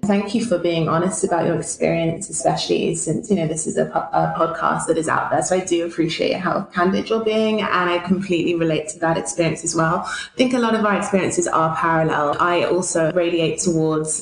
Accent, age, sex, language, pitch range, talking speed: British, 20-39, female, English, 160-180 Hz, 215 wpm